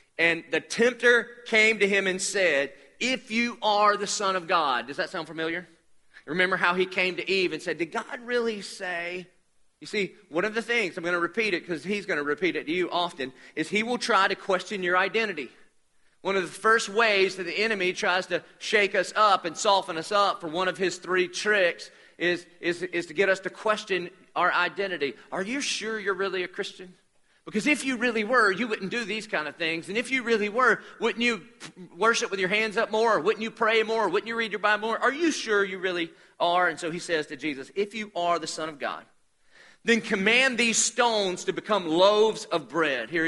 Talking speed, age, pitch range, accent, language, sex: 225 wpm, 40-59, 175-220 Hz, American, English, male